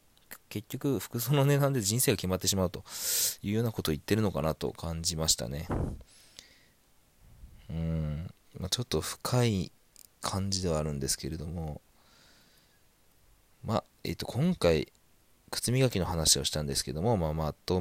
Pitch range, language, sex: 85-115 Hz, Japanese, male